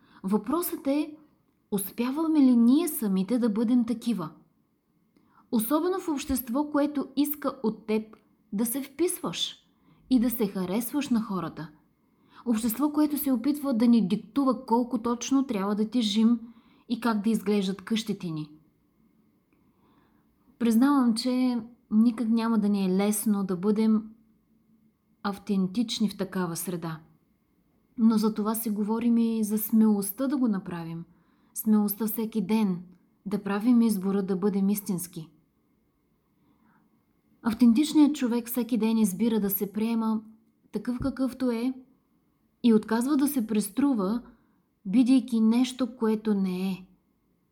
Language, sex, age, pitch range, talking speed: Bulgarian, female, 20-39, 210-250 Hz, 125 wpm